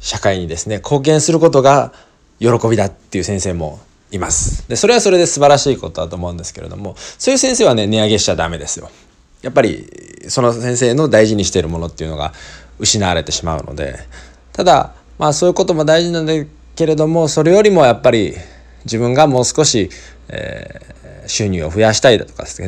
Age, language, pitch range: 20-39, Japanese, 85-145 Hz